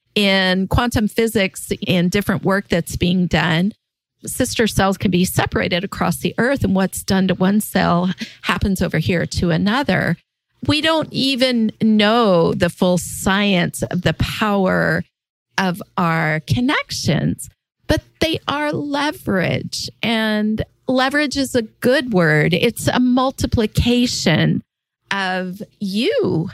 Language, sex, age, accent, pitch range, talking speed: English, female, 40-59, American, 180-230 Hz, 125 wpm